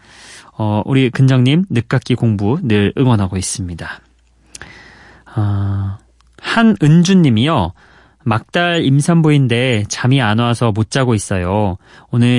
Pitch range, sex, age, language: 110-150 Hz, male, 30-49, Korean